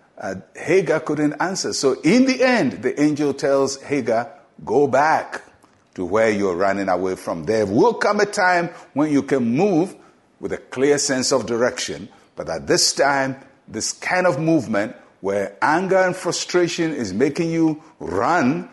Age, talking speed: 60-79, 165 wpm